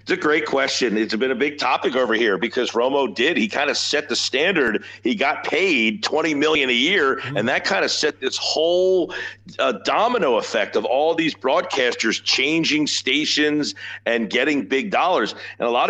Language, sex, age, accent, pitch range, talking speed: English, male, 50-69, American, 115-160 Hz, 190 wpm